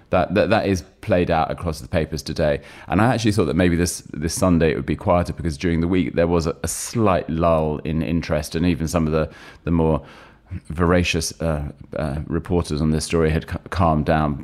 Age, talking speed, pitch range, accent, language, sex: 30-49, 215 wpm, 75-90 Hz, British, English, male